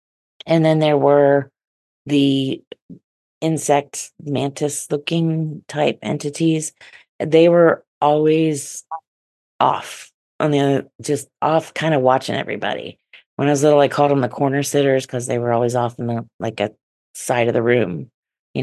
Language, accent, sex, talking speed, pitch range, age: English, American, female, 150 wpm, 125-150 Hz, 40-59